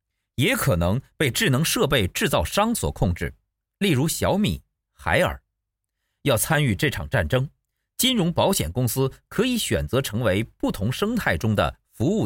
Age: 50-69